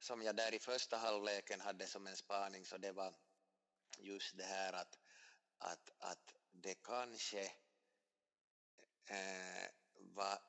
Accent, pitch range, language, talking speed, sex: Finnish, 95-105 Hz, Swedish, 125 wpm, male